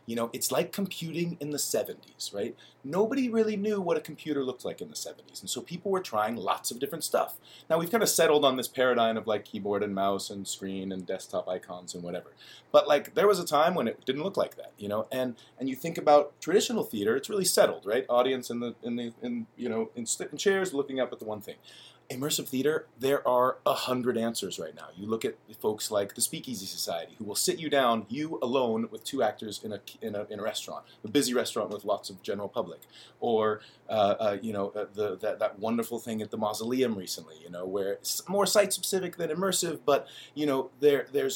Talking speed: 235 wpm